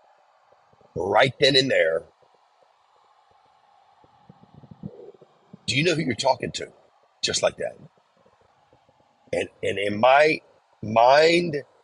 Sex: male